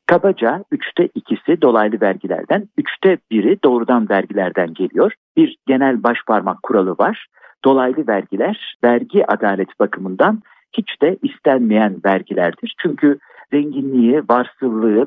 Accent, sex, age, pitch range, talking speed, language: native, male, 50-69, 115-195 Hz, 110 wpm, Turkish